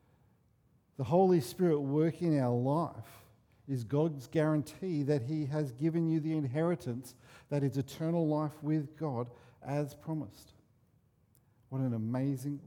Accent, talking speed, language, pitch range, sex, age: Australian, 130 wpm, English, 120-150 Hz, male, 50-69